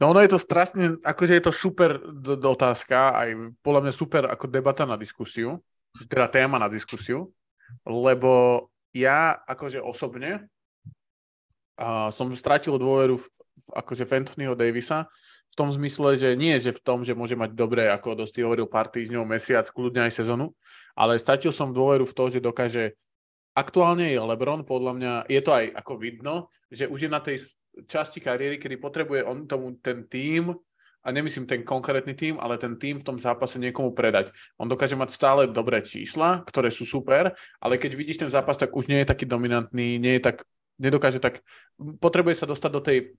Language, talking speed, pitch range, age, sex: Slovak, 180 wpm, 120-145 Hz, 20-39, male